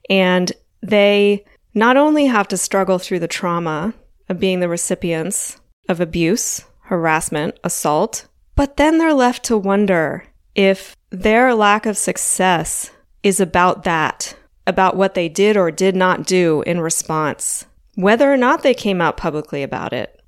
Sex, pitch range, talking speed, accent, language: female, 170-210 Hz, 150 wpm, American, English